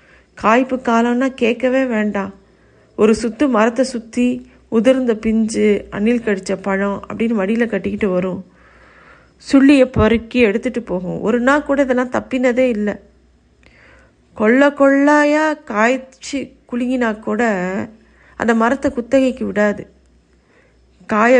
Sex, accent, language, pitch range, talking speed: female, native, Tamil, 200-245 Hz, 105 wpm